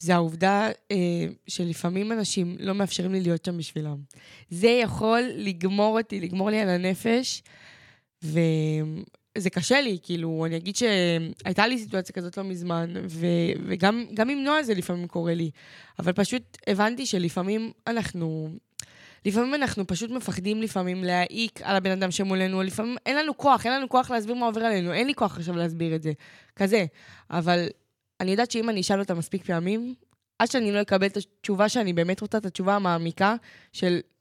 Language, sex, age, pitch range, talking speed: Hebrew, female, 20-39, 175-225 Hz, 165 wpm